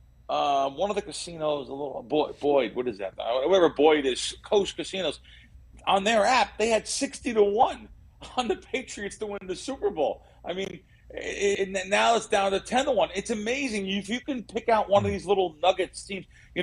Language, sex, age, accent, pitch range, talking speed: English, male, 40-59, American, 140-200 Hz, 210 wpm